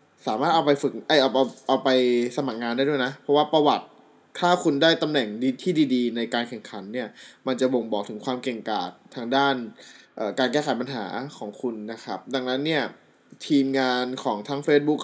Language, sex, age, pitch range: Thai, male, 20-39, 120-145 Hz